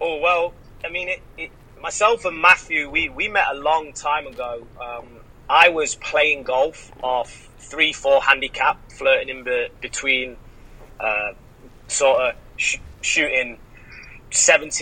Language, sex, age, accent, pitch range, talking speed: English, male, 30-49, British, 130-185 Hz, 140 wpm